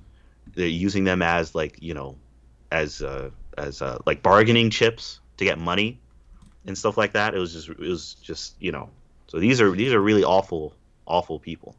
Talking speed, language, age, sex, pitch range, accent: 195 wpm, English, 30-49, male, 70-90 Hz, American